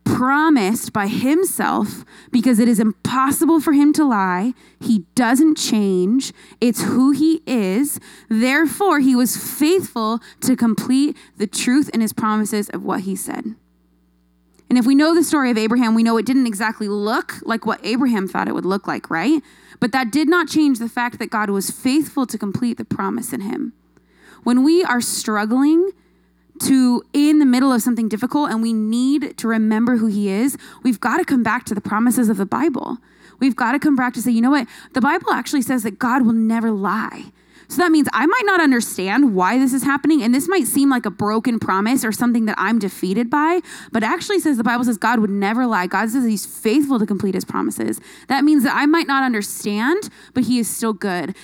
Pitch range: 215-280 Hz